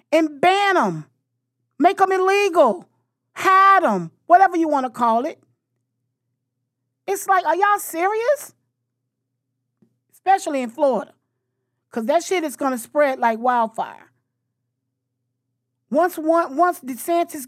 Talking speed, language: 115 wpm, English